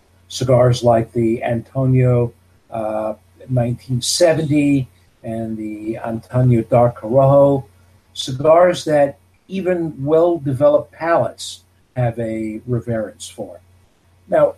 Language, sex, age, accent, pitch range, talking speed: English, male, 50-69, American, 105-145 Hz, 85 wpm